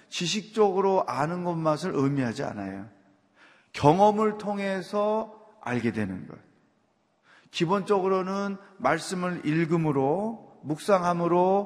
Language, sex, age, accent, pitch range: Korean, male, 30-49, native, 160-230 Hz